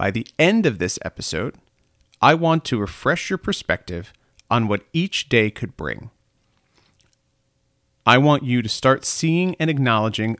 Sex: male